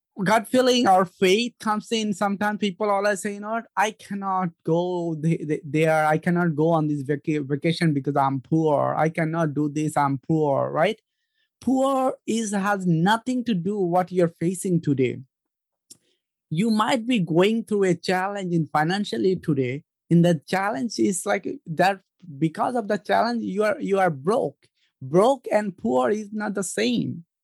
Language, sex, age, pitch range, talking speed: English, male, 20-39, 170-215 Hz, 160 wpm